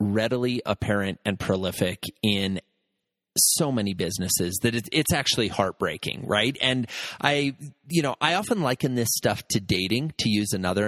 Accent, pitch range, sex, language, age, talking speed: American, 115-190 Hz, male, English, 30-49, 150 wpm